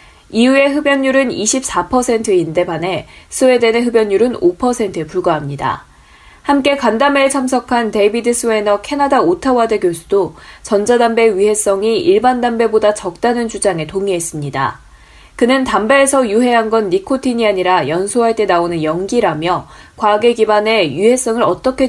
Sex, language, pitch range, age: female, Korean, 185-255 Hz, 20-39